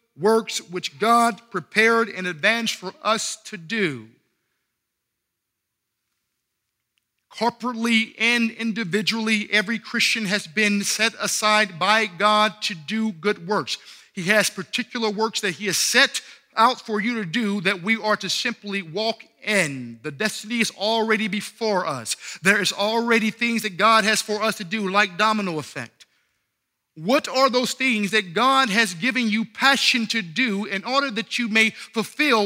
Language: English